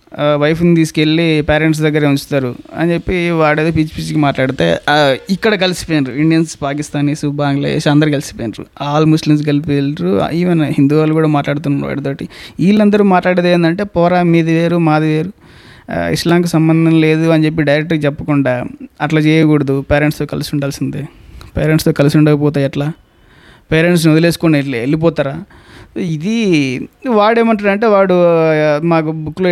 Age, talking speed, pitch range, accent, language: 20-39, 135 wpm, 145-175 Hz, Indian, English